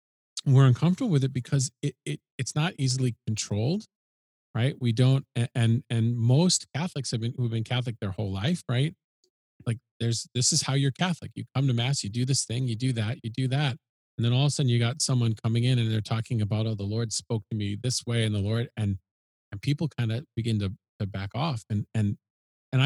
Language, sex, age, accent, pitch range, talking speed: English, male, 40-59, American, 115-135 Hz, 230 wpm